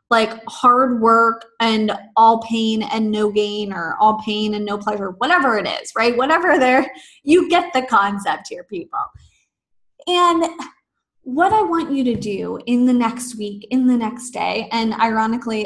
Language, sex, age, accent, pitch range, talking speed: English, female, 20-39, American, 225-300 Hz, 170 wpm